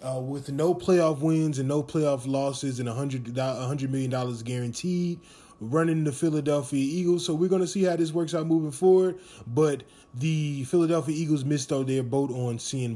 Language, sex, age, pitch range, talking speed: English, male, 20-39, 135-170 Hz, 180 wpm